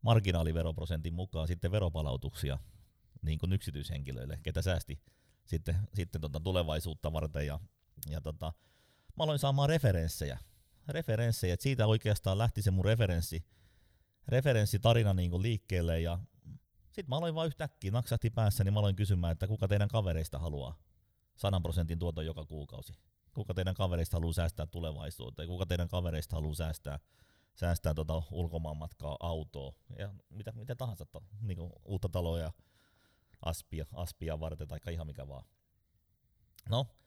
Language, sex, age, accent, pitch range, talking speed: Finnish, male, 30-49, native, 85-110 Hz, 140 wpm